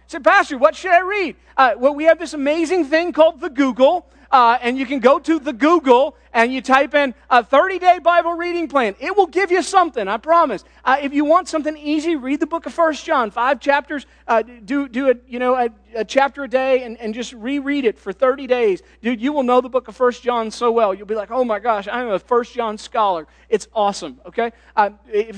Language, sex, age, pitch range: English, male, 40-59, 195-280 Hz